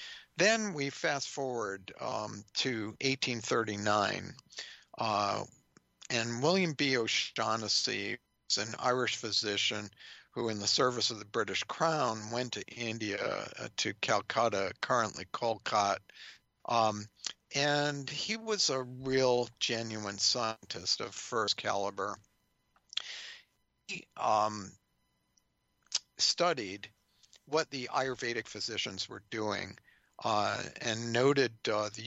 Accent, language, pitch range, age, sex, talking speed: American, English, 110-135 Hz, 50-69, male, 105 wpm